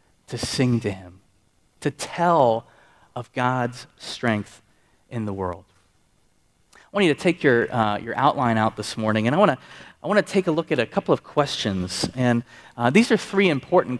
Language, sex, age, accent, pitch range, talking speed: English, male, 30-49, American, 115-155 Hz, 185 wpm